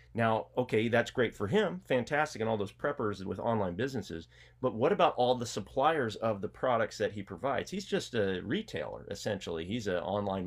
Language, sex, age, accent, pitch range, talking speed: English, male, 30-49, American, 95-120 Hz, 195 wpm